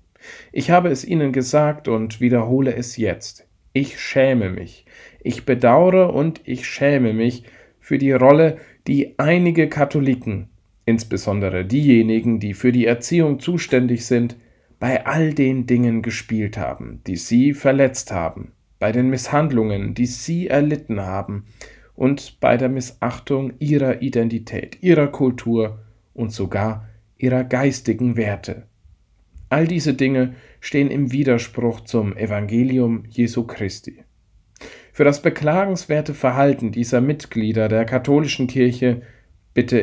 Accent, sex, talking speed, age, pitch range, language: German, male, 125 wpm, 40-59, 110-135 Hz, German